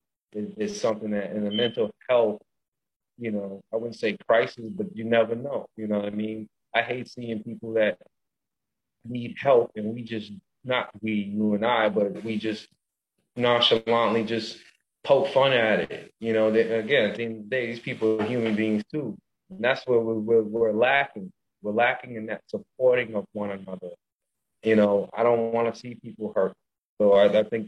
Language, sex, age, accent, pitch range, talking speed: English, male, 30-49, American, 105-115 Hz, 180 wpm